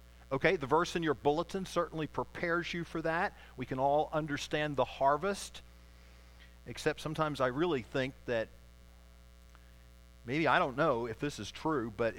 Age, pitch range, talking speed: 50-69, 115-165 Hz, 160 wpm